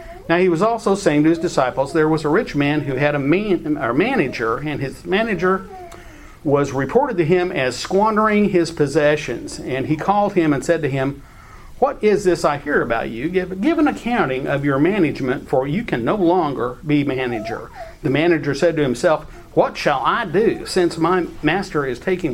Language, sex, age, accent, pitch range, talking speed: English, male, 50-69, American, 140-185 Hz, 195 wpm